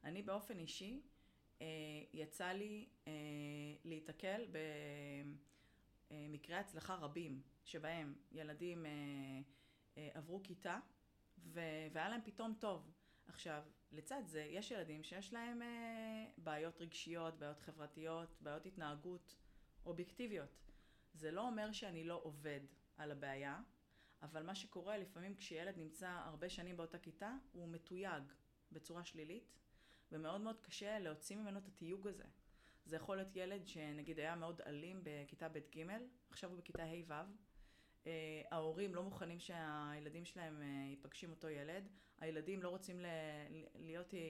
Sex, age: female, 30-49